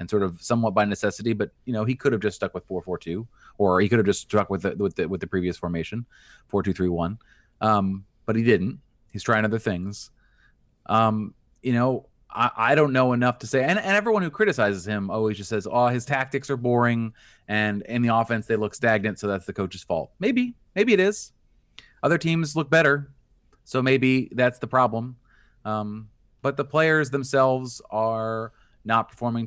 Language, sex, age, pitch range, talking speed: English, male, 30-49, 105-125 Hz, 205 wpm